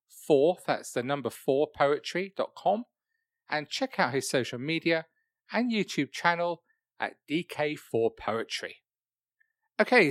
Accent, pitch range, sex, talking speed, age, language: British, 145-210 Hz, male, 105 wpm, 40-59, English